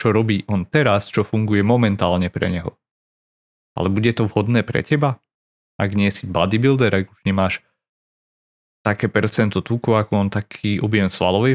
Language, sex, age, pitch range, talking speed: Slovak, male, 30-49, 100-115 Hz, 155 wpm